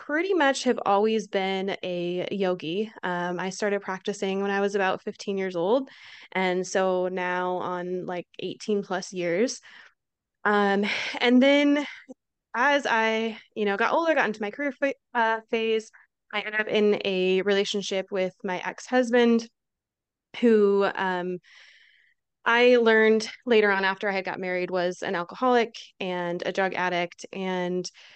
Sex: female